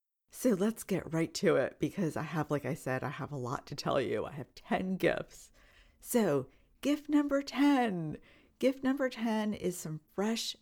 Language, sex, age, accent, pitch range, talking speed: English, female, 40-59, American, 165-220 Hz, 185 wpm